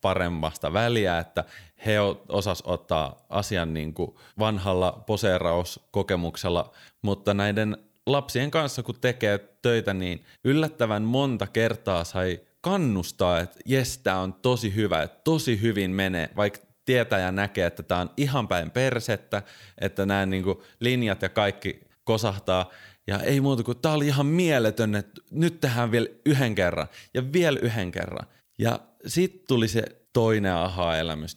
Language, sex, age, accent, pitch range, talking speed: Finnish, male, 30-49, native, 95-125 Hz, 140 wpm